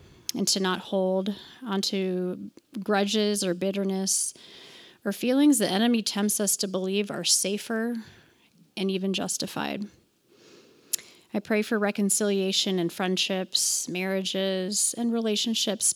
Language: English